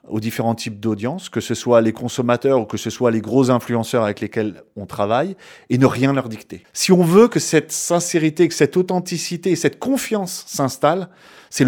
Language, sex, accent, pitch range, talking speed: French, male, French, 120-175 Hz, 195 wpm